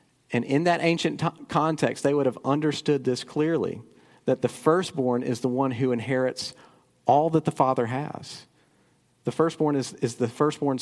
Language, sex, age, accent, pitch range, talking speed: English, male, 40-59, American, 120-150 Hz, 165 wpm